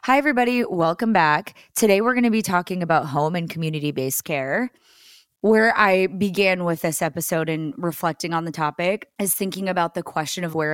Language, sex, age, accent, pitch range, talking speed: English, female, 20-39, American, 155-195 Hz, 190 wpm